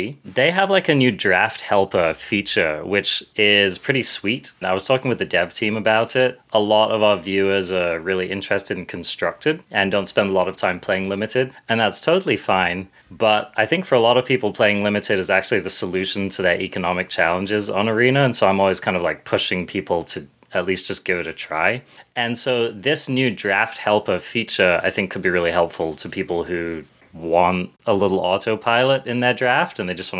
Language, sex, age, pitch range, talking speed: English, male, 20-39, 95-125 Hz, 215 wpm